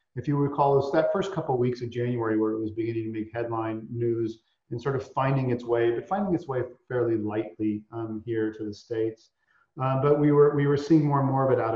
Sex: male